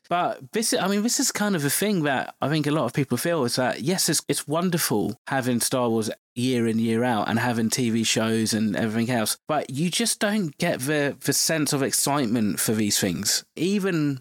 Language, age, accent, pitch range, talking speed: English, 20-39, British, 115-145 Hz, 220 wpm